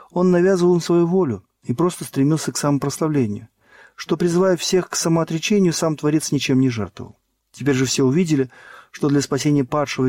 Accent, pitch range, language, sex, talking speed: native, 125-160 Hz, Russian, male, 165 wpm